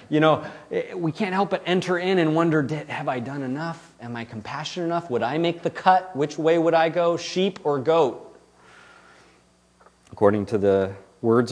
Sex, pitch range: male, 115-165 Hz